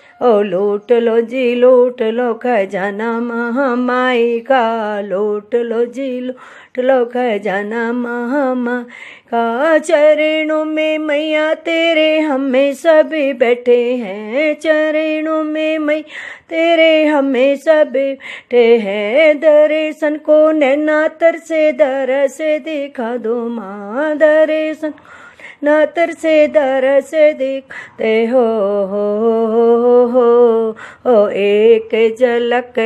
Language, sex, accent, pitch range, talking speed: Hindi, female, native, 230-310 Hz, 105 wpm